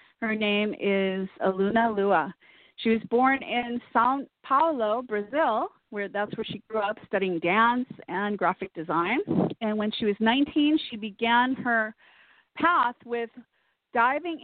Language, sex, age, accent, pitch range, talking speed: English, female, 40-59, American, 200-255 Hz, 140 wpm